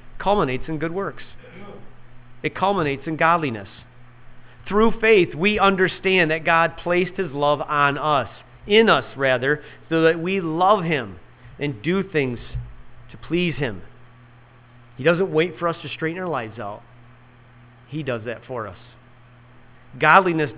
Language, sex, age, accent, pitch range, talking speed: English, male, 40-59, American, 120-155 Hz, 145 wpm